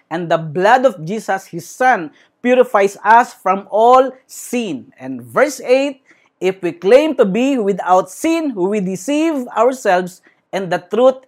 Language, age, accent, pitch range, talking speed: English, 40-59, Filipino, 180-250 Hz, 150 wpm